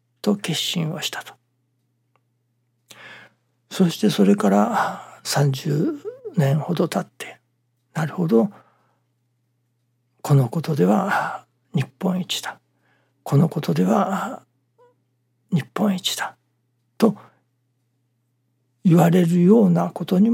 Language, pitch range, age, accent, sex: Japanese, 125-195 Hz, 60-79, native, male